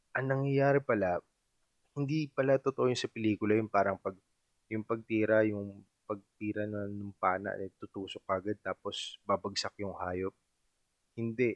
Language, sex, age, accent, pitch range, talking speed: Filipino, male, 20-39, native, 95-115 Hz, 135 wpm